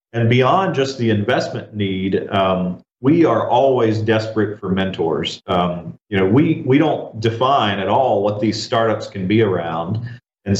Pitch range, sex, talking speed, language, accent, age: 100-120 Hz, male, 165 wpm, English, American, 40-59